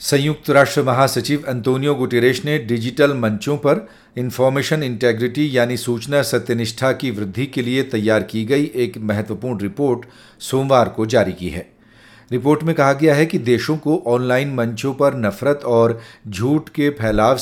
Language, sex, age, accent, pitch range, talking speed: Hindi, male, 50-69, native, 115-140 Hz, 155 wpm